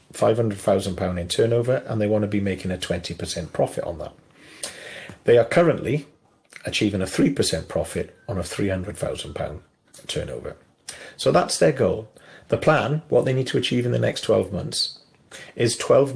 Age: 40-59